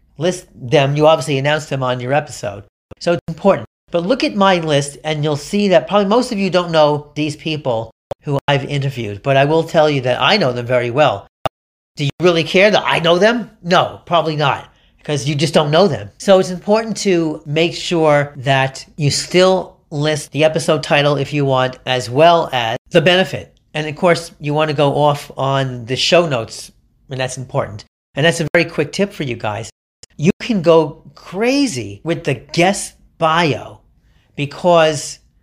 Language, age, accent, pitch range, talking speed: English, 40-59, American, 135-175 Hz, 195 wpm